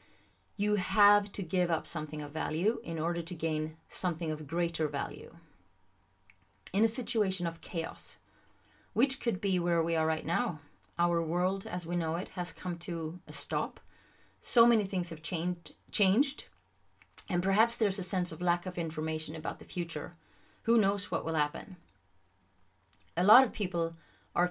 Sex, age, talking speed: female, 30-49, 165 wpm